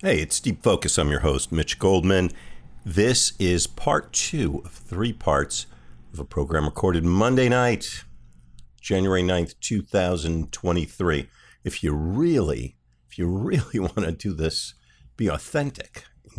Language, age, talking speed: English, 50-69, 140 wpm